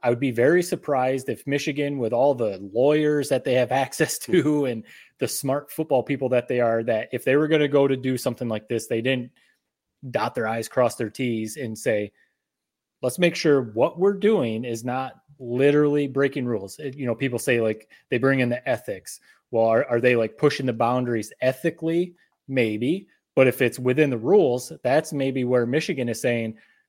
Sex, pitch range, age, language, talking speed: male, 120-140 Hz, 30-49, English, 200 wpm